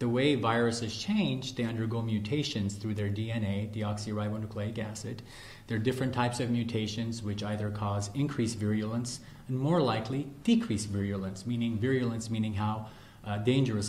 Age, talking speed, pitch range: 30-49, 145 wpm, 105-130 Hz